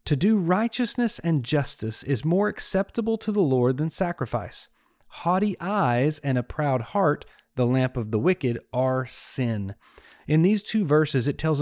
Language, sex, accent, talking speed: English, male, American, 165 wpm